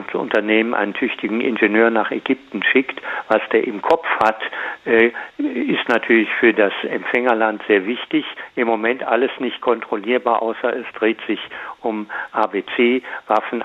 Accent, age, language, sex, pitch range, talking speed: German, 60-79, German, male, 105-120 Hz, 130 wpm